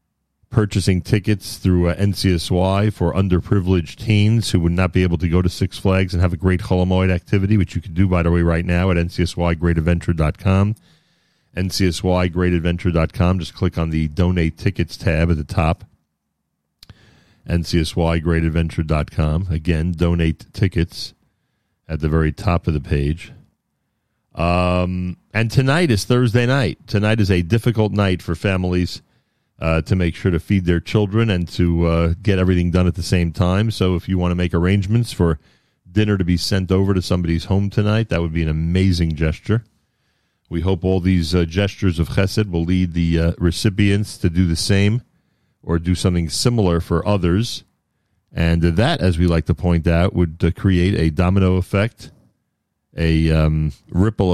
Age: 40-59